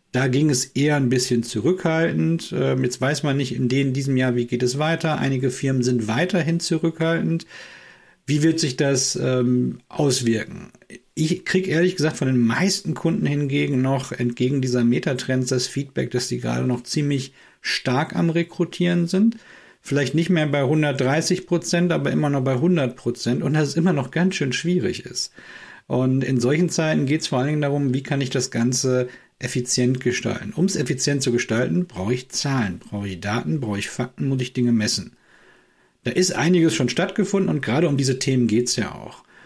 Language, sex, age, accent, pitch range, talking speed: German, male, 50-69, German, 125-155 Hz, 190 wpm